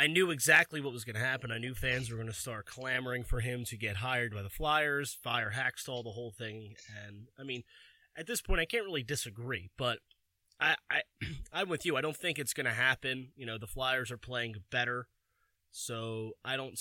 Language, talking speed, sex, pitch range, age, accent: English, 225 wpm, male, 120-150 Hz, 30-49, American